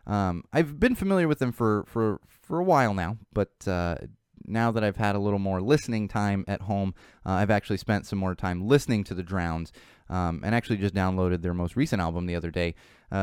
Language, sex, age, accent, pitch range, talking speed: English, male, 20-39, American, 95-120 Hz, 220 wpm